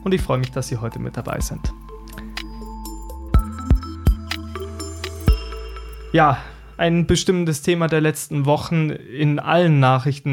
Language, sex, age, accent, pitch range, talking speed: German, male, 20-39, German, 125-145 Hz, 115 wpm